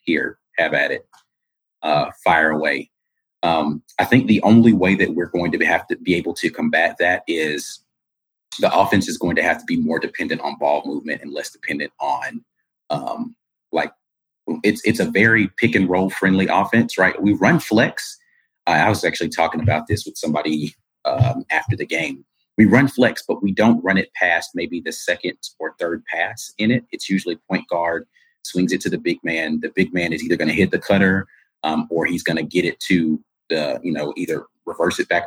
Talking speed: 200 wpm